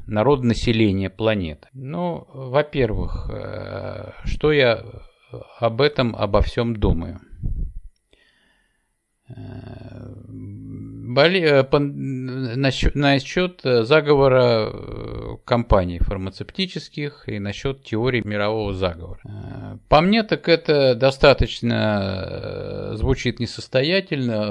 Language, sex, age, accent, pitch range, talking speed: Russian, male, 50-69, native, 105-135 Hz, 75 wpm